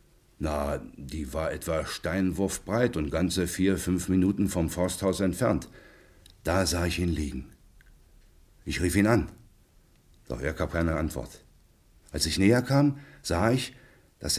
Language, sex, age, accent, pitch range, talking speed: German, male, 60-79, German, 75-95 Hz, 140 wpm